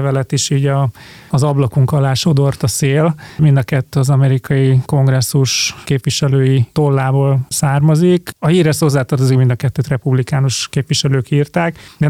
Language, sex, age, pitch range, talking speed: Hungarian, male, 30-49, 135-150 Hz, 150 wpm